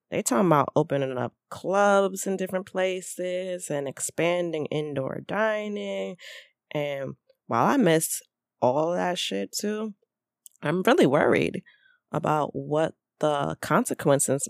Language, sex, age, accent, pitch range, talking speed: English, female, 20-39, American, 135-180 Hz, 115 wpm